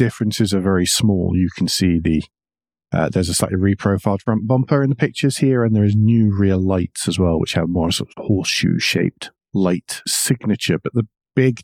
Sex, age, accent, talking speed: male, 40-59, British, 200 wpm